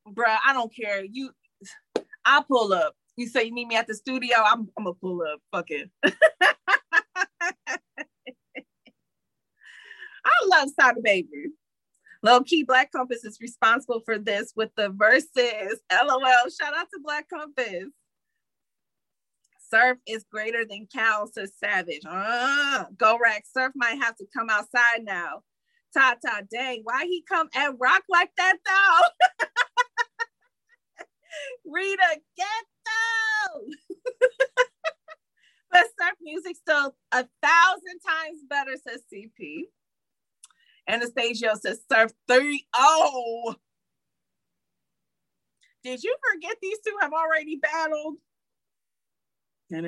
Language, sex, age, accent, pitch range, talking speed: English, female, 30-49, American, 230-360 Hz, 120 wpm